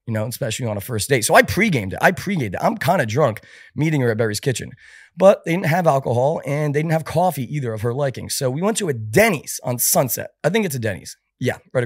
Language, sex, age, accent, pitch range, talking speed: English, male, 30-49, American, 125-170 Hz, 265 wpm